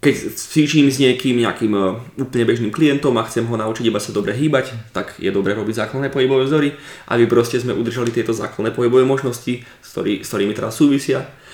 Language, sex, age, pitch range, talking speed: Slovak, male, 20-39, 110-130 Hz, 200 wpm